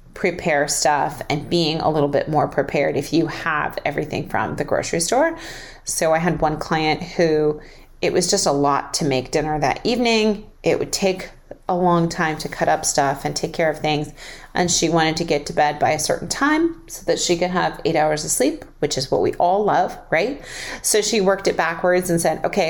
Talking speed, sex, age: 220 wpm, female, 30-49